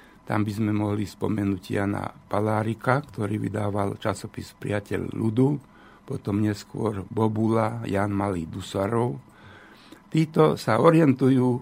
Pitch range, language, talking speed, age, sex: 100-130 Hz, Slovak, 110 wpm, 60-79, male